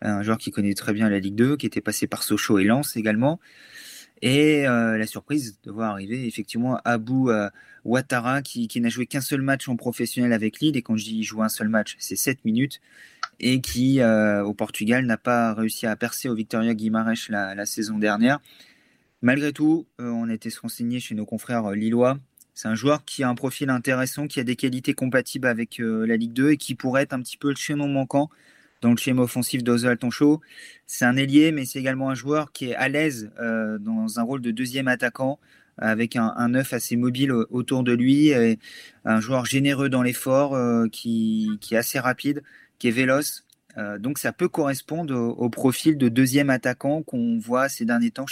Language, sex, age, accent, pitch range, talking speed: French, male, 30-49, French, 115-135 Hz, 210 wpm